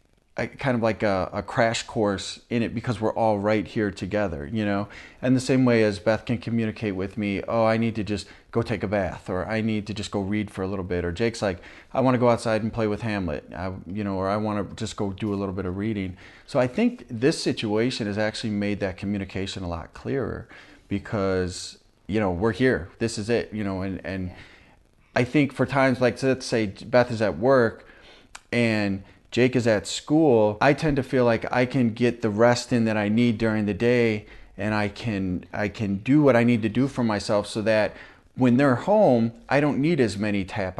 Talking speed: 230 wpm